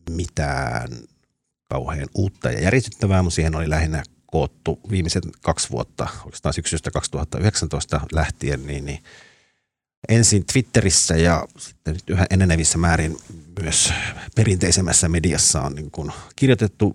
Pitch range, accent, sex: 80-95 Hz, native, male